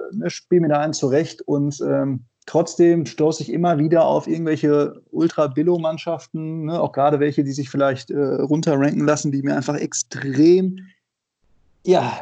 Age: 20-39